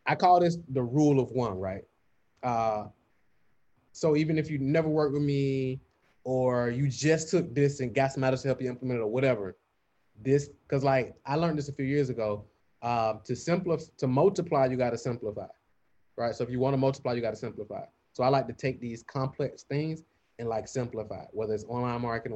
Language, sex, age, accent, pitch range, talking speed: English, male, 20-39, American, 115-145 Hz, 210 wpm